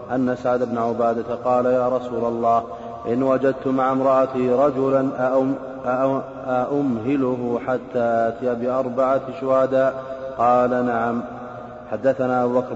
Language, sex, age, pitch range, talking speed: Arabic, male, 30-49, 115-125 Hz, 115 wpm